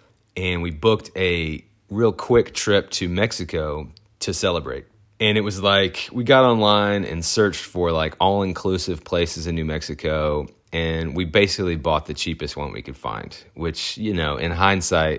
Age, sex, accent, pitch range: 30-49, male, American, 75-95 Hz